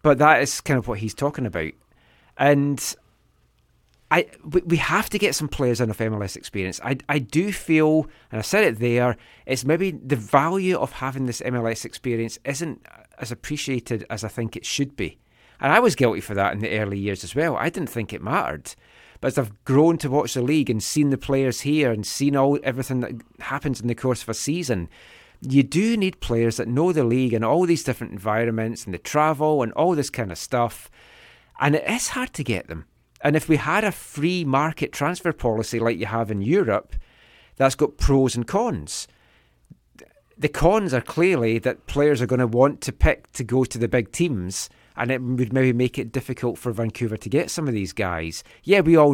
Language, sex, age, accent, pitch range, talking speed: English, male, 30-49, British, 115-150 Hz, 210 wpm